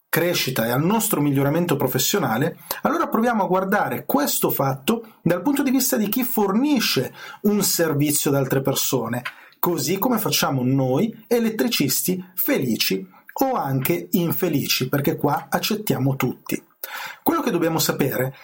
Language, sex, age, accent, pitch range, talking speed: Italian, male, 40-59, native, 135-190 Hz, 135 wpm